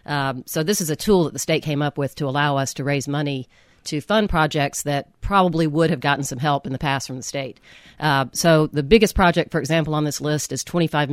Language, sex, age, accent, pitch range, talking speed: English, female, 40-59, American, 135-155 Hz, 250 wpm